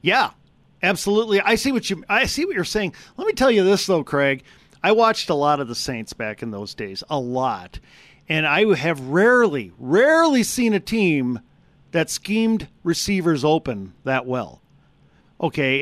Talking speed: 175 wpm